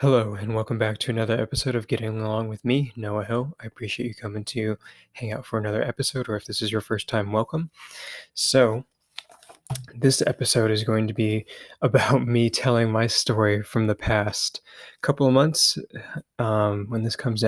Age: 20-39